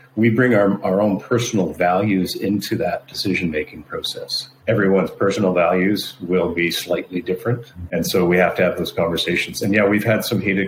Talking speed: 180 wpm